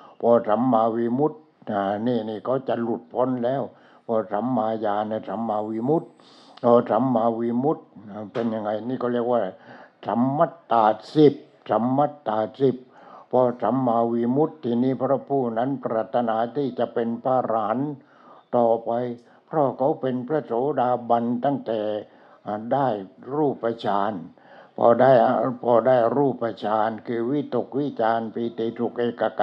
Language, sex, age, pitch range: English, male, 60-79, 110-125 Hz